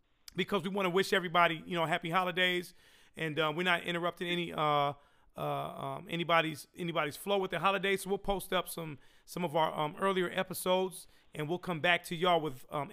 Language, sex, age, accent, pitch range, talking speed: English, male, 40-59, American, 165-200 Hz, 205 wpm